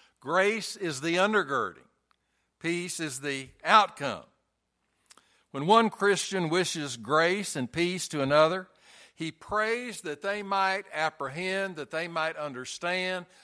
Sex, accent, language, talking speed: male, American, English, 120 wpm